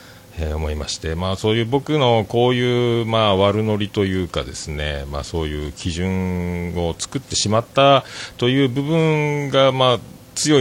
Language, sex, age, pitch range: Japanese, male, 40-59, 80-125 Hz